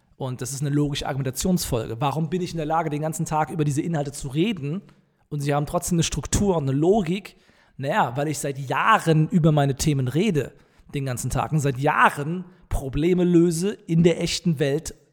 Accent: German